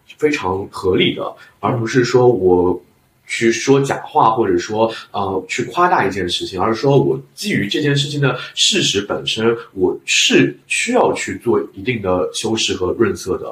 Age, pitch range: 20-39, 105-140 Hz